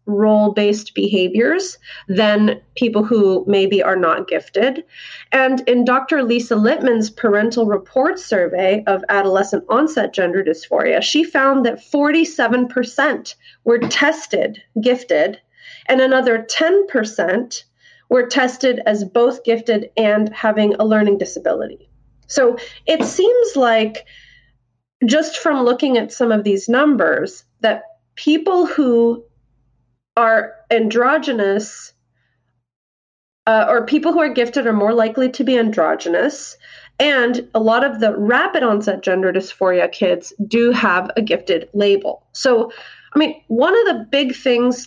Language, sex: English, female